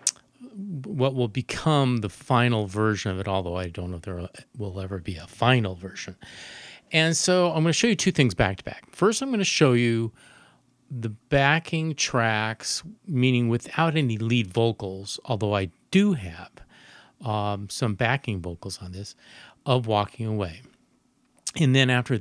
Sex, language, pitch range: male, English, 100-130 Hz